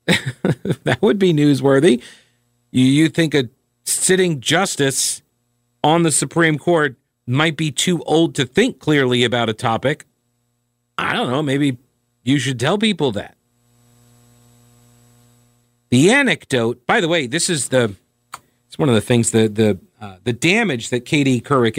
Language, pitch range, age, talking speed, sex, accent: English, 120-145 Hz, 50-69, 150 wpm, male, American